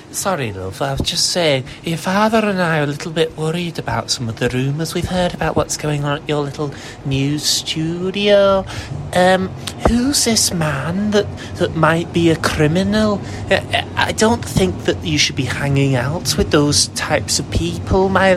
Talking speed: 185 wpm